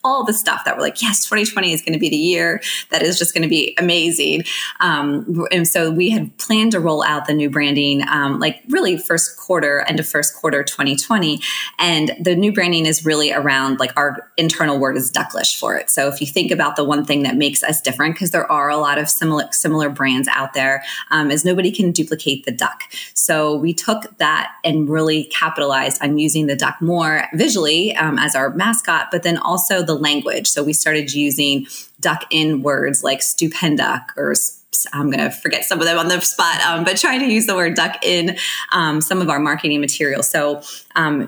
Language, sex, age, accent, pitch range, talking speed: English, female, 20-39, American, 145-175 Hz, 215 wpm